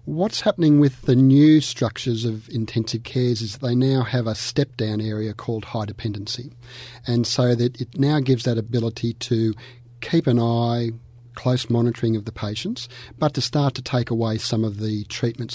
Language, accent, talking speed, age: English, Australian, 180 wpm, 40-59